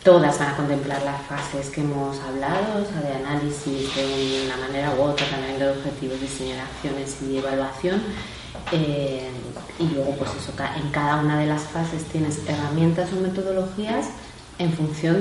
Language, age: Spanish, 30-49